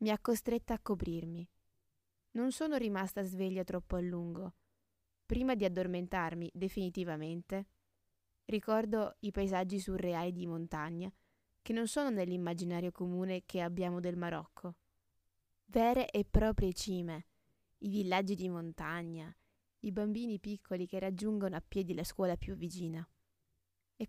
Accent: native